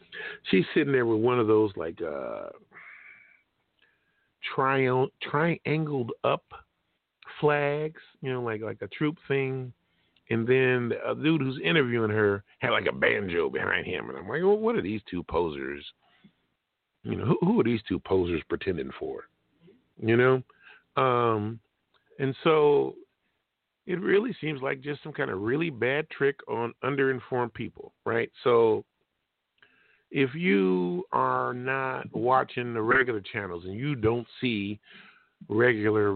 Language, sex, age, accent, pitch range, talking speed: English, male, 50-69, American, 110-155 Hz, 145 wpm